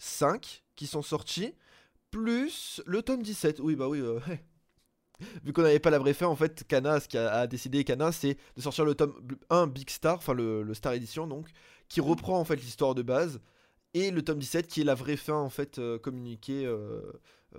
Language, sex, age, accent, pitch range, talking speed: French, male, 20-39, French, 125-165 Hz, 210 wpm